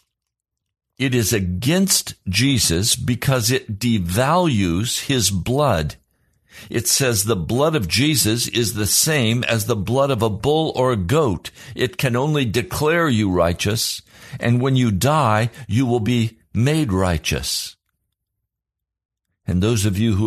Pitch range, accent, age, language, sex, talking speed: 95-130 Hz, American, 60-79, English, male, 140 wpm